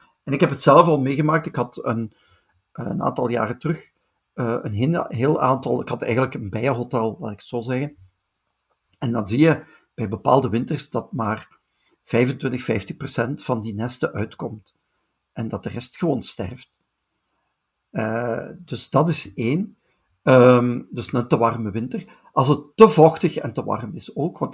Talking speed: 165 wpm